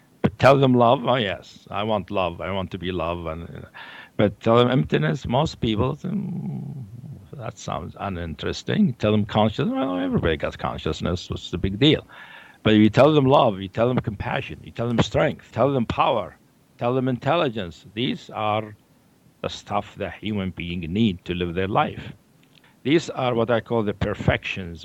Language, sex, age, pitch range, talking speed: English, male, 60-79, 90-120 Hz, 180 wpm